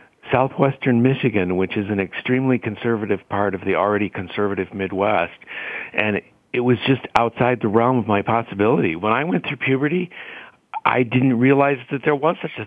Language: English